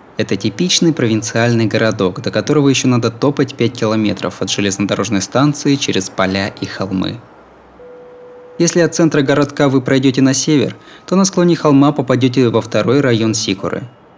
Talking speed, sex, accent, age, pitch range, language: 150 wpm, male, native, 20-39, 105-150 Hz, Russian